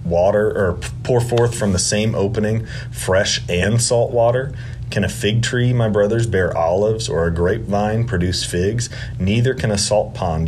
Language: English